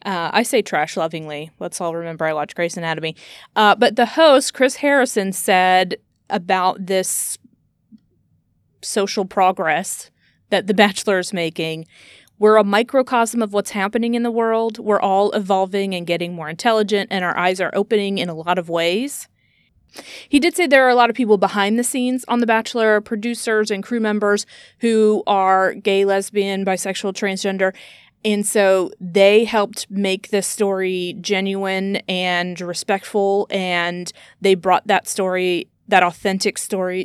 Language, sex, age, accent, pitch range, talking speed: English, female, 30-49, American, 185-225 Hz, 155 wpm